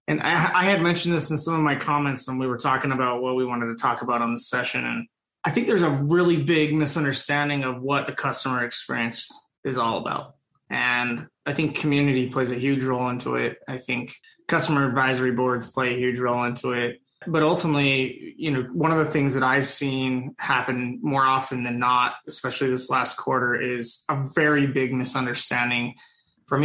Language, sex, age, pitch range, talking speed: English, male, 20-39, 125-145 Hz, 195 wpm